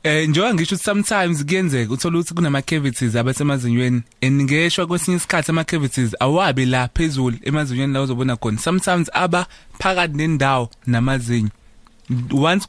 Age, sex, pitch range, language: 20-39, male, 130-175 Hz, English